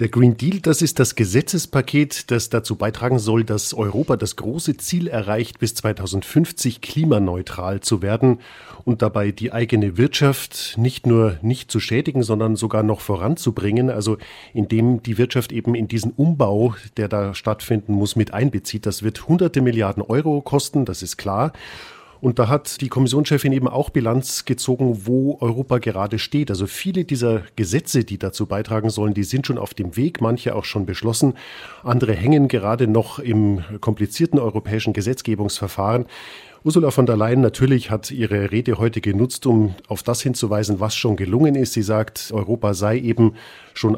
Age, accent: 40-59, German